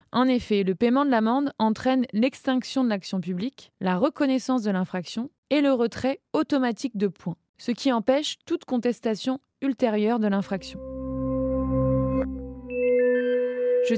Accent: French